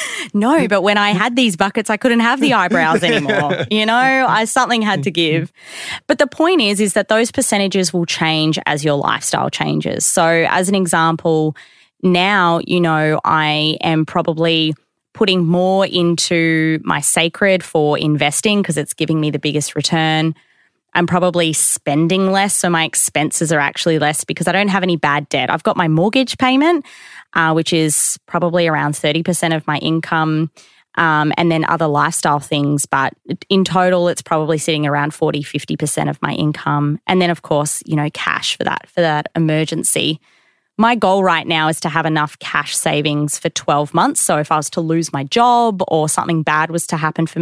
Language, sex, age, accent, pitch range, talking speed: English, female, 20-39, Australian, 155-190 Hz, 185 wpm